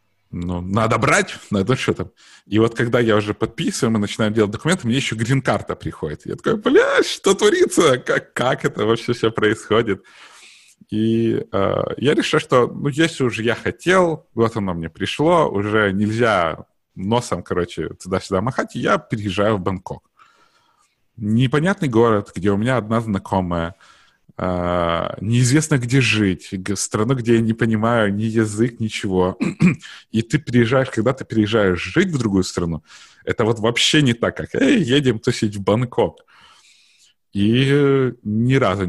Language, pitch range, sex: Russian, 100-125 Hz, male